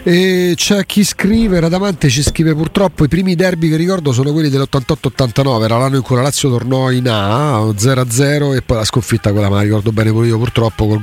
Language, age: Italian, 40-59